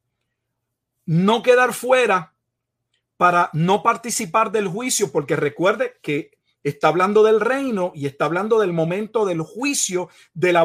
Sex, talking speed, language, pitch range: male, 135 wpm, Spanish, 155-215 Hz